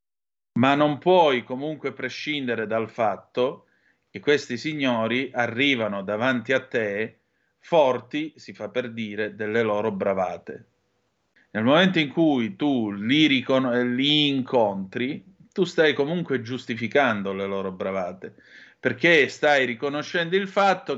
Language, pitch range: Italian, 115-145 Hz